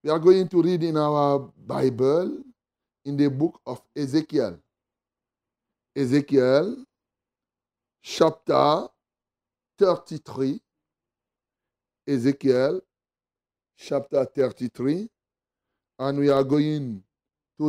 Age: 60-79